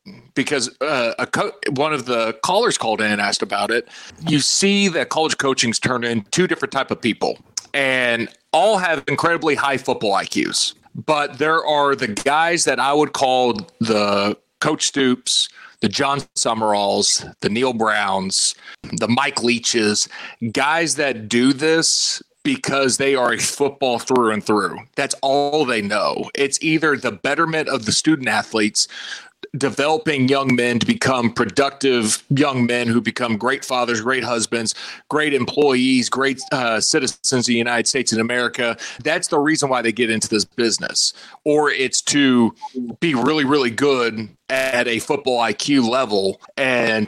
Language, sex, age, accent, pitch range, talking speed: English, male, 30-49, American, 115-145 Hz, 160 wpm